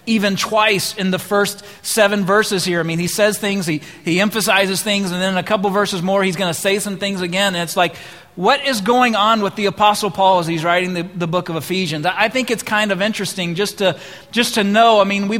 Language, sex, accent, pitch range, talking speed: English, male, American, 180-215 Hz, 255 wpm